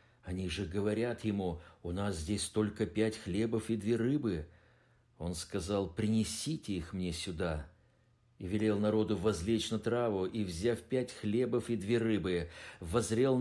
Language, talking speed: Russian, 150 wpm